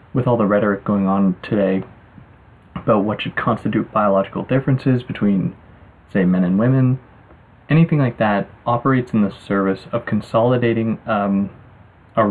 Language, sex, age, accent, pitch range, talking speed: English, male, 20-39, American, 100-125 Hz, 140 wpm